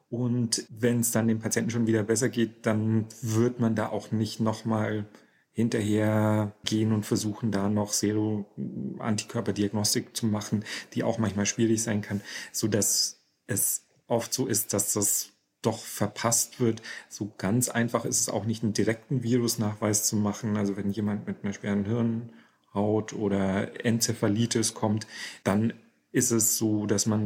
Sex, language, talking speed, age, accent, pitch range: male, German, 155 wpm, 40-59, German, 105-115 Hz